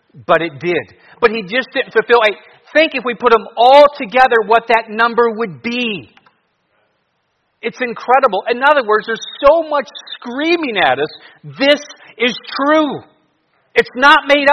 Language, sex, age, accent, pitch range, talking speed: English, male, 50-69, American, 170-260 Hz, 155 wpm